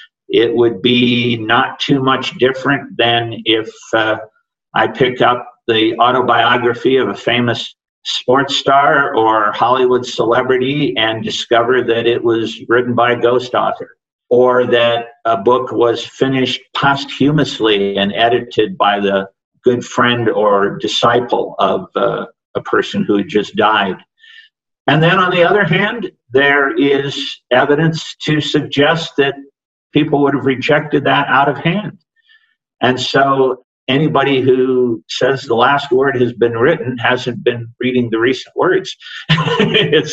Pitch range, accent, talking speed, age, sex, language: 120-150 Hz, American, 140 wpm, 50-69, male, English